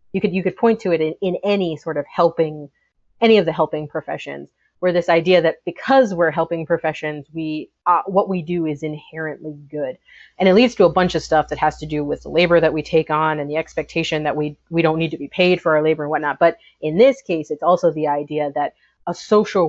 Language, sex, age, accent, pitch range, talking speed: English, female, 30-49, American, 155-185 Hz, 245 wpm